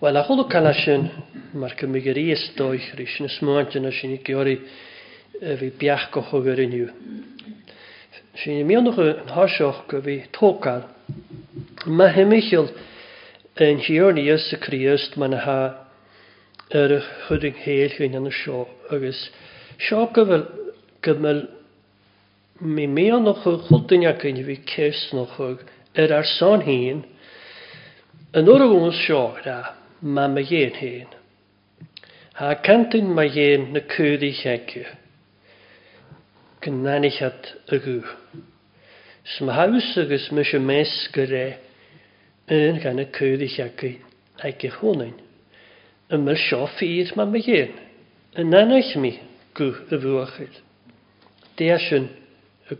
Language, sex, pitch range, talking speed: English, male, 130-170 Hz, 90 wpm